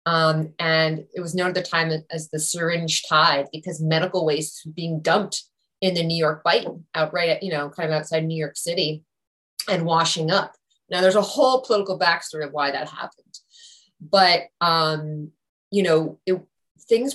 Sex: female